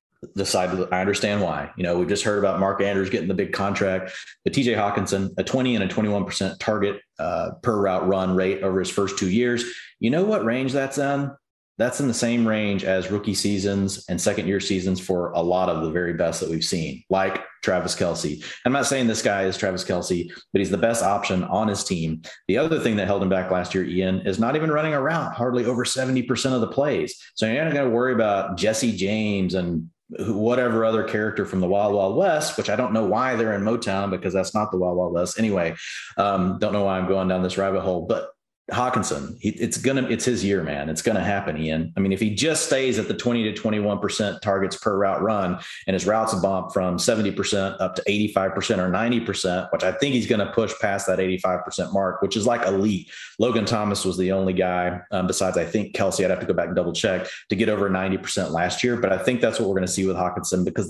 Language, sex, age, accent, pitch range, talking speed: English, male, 30-49, American, 95-110 Hz, 240 wpm